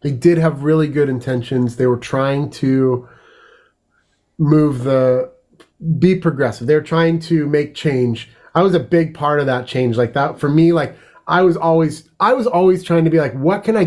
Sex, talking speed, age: male, 195 wpm, 30-49